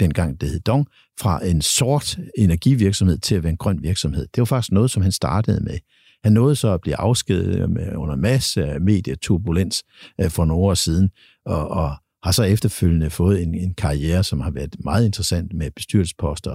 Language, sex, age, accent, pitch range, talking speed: Danish, male, 60-79, native, 85-105 Hz, 180 wpm